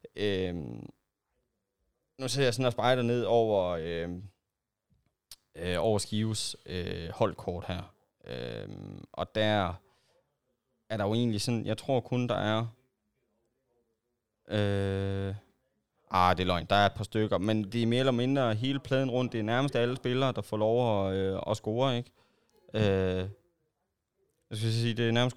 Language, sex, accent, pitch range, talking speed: Danish, male, native, 95-120 Hz, 160 wpm